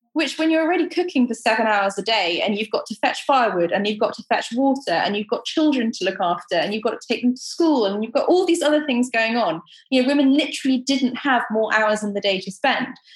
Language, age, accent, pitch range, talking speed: English, 20-39, British, 210-275 Hz, 270 wpm